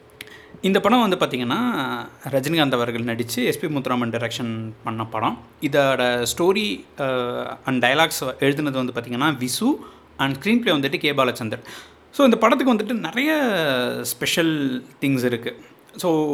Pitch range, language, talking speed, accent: 125-180 Hz, Tamil, 130 wpm, native